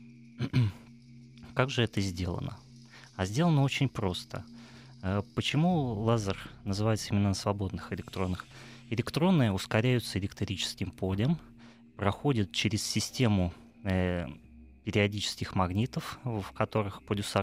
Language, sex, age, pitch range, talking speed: Russian, male, 20-39, 100-125 Hz, 95 wpm